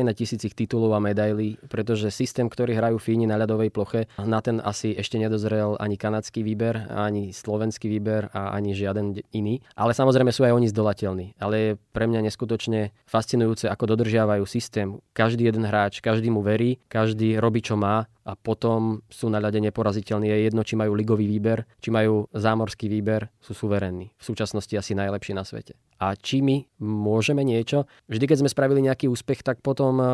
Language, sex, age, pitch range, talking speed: Slovak, male, 20-39, 105-115 Hz, 180 wpm